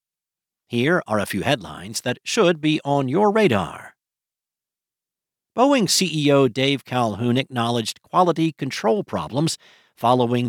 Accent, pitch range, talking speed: American, 120-175 Hz, 115 wpm